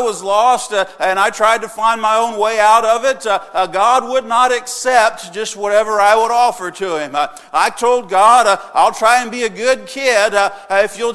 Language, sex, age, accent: English, male, 50-69, American